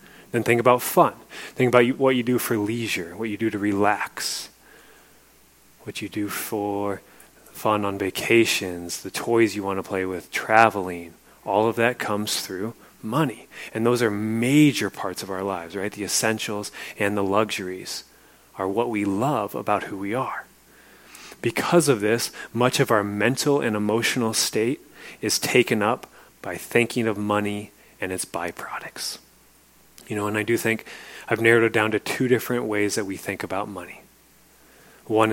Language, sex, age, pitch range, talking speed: English, male, 30-49, 100-115 Hz, 170 wpm